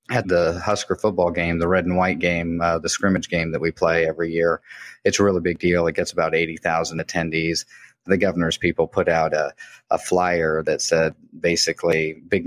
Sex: male